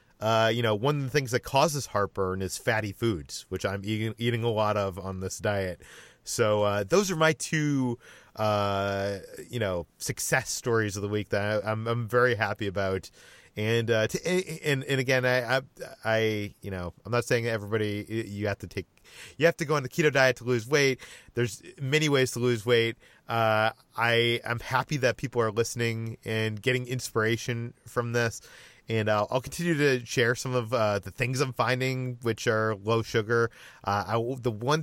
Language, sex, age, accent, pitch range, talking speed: English, male, 30-49, American, 105-125 Hz, 195 wpm